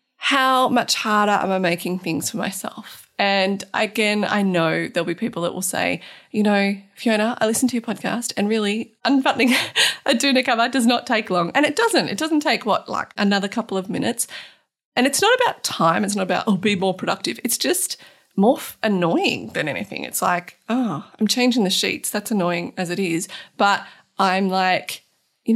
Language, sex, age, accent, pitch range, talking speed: English, female, 30-49, Australian, 190-250 Hz, 195 wpm